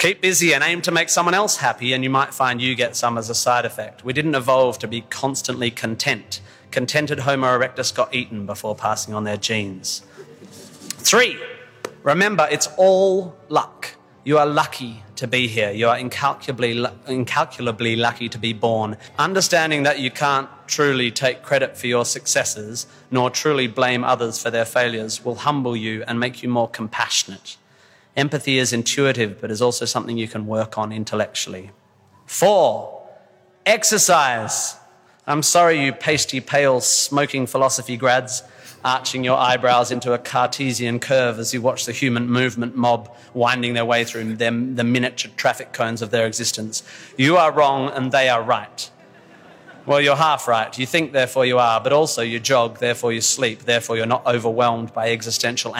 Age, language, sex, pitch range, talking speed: 30-49, English, male, 115-135 Hz, 170 wpm